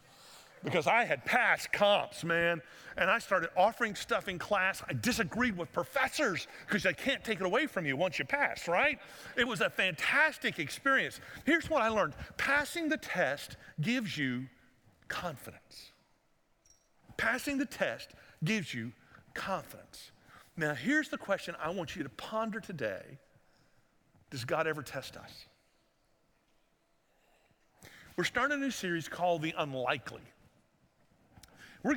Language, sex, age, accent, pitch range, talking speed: English, male, 50-69, American, 155-230 Hz, 140 wpm